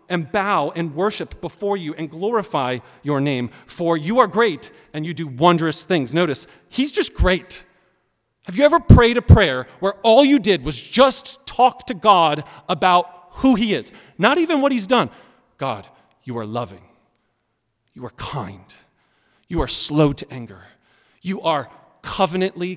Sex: male